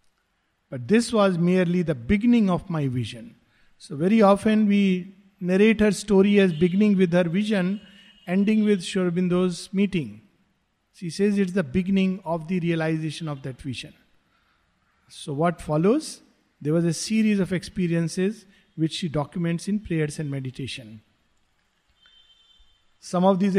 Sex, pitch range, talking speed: male, 170-210 Hz, 140 wpm